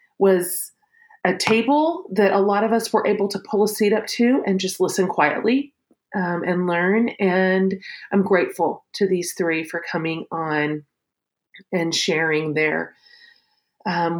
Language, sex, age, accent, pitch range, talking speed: English, female, 30-49, American, 165-215 Hz, 150 wpm